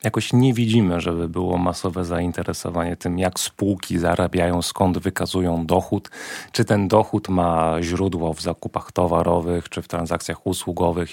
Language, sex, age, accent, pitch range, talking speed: Polish, male, 30-49, native, 90-115 Hz, 140 wpm